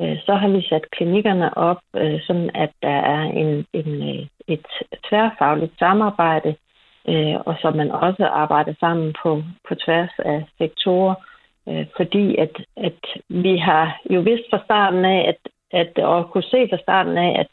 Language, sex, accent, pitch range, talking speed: Danish, female, native, 155-195 Hz, 155 wpm